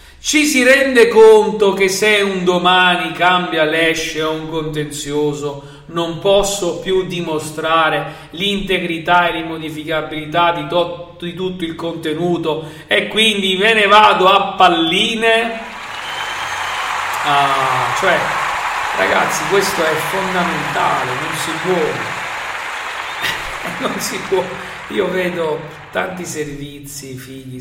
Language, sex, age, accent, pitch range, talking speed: Italian, male, 40-59, native, 130-180 Hz, 110 wpm